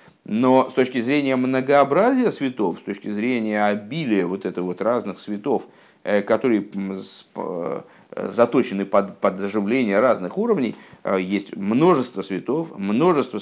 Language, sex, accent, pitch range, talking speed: Russian, male, native, 100-140 Hz, 105 wpm